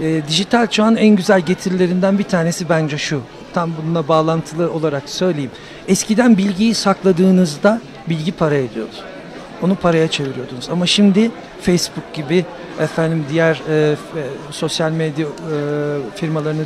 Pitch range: 165-220 Hz